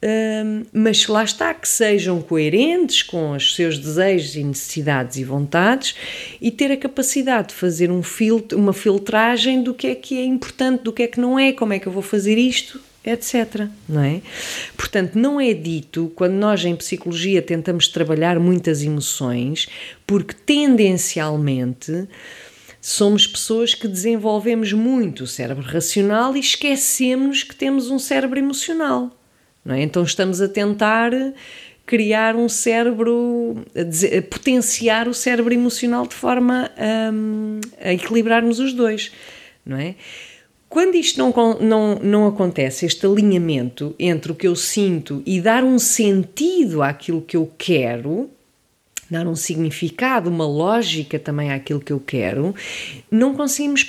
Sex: female